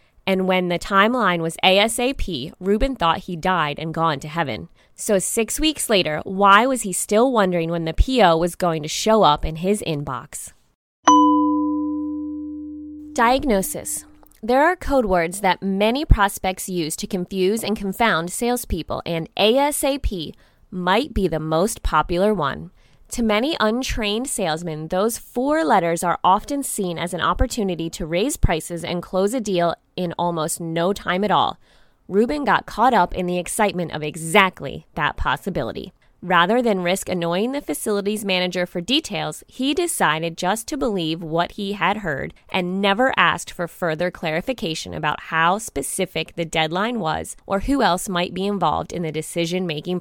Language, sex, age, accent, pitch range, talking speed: English, female, 20-39, American, 170-220 Hz, 160 wpm